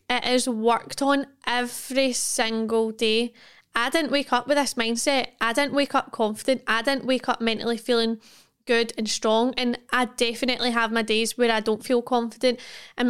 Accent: British